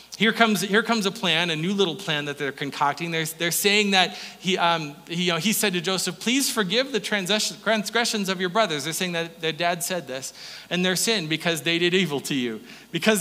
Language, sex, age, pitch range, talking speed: English, male, 30-49, 160-215 Hz, 230 wpm